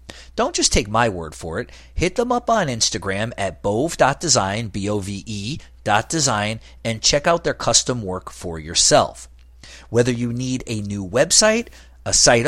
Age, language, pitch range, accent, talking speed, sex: 40-59, English, 85-130 Hz, American, 160 wpm, male